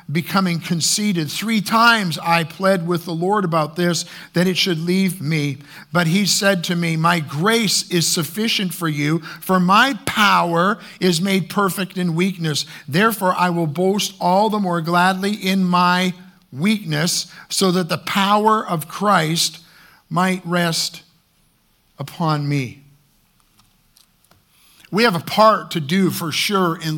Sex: male